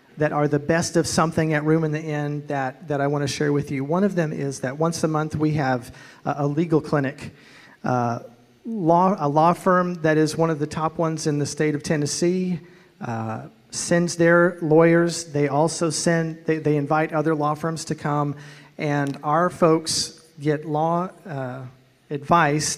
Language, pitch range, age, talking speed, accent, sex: English, 145-170 Hz, 40-59, 190 wpm, American, male